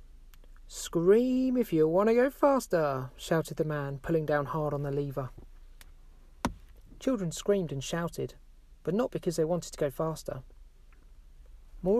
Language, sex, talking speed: English, male, 145 wpm